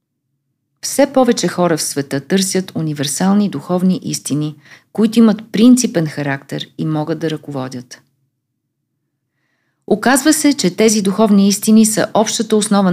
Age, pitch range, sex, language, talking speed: 40-59, 150-215 Hz, female, Bulgarian, 120 wpm